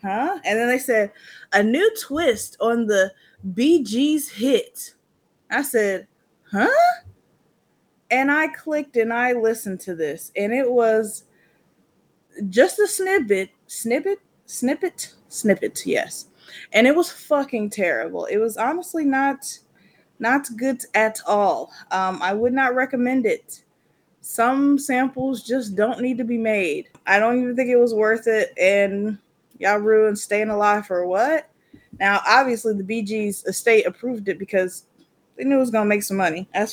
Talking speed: 150 wpm